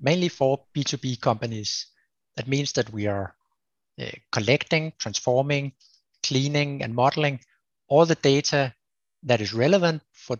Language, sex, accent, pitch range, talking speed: English, male, Danish, 115-140 Hz, 125 wpm